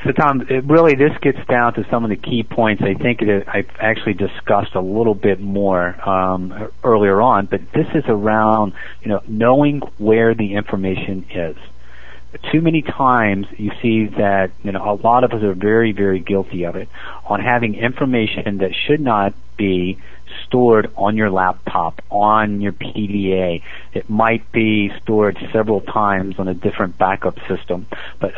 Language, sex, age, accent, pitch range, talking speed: English, male, 40-59, American, 95-115 Hz, 165 wpm